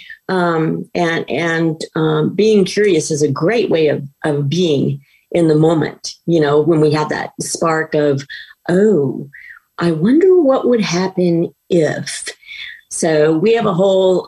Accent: American